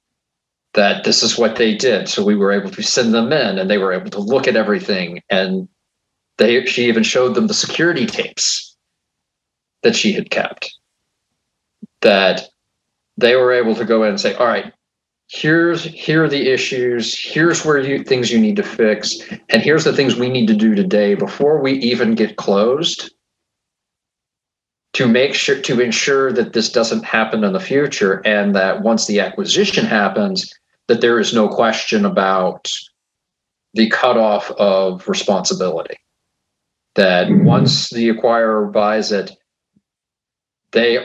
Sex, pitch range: male, 105-135 Hz